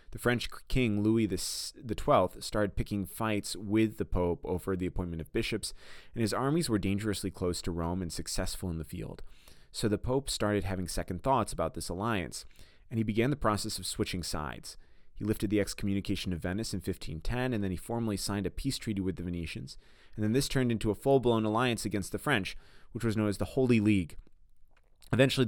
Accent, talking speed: American, 200 wpm